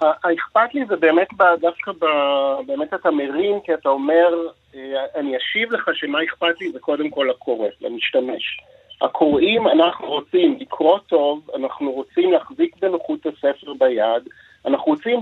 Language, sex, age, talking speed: Hebrew, male, 50-69, 140 wpm